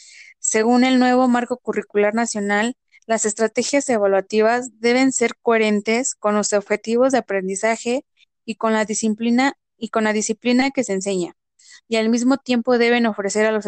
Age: 20-39